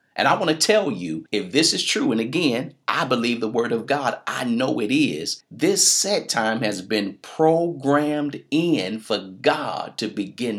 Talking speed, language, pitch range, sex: 185 wpm, English, 105-140 Hz, male